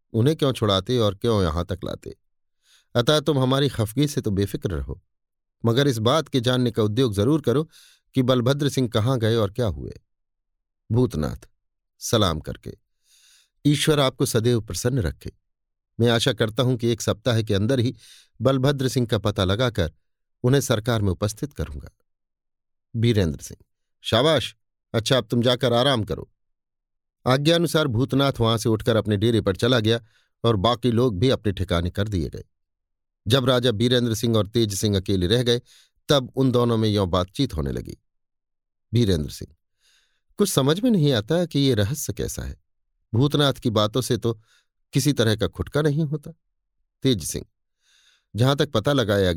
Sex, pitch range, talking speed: male, 100-130 Hz, 165 wpm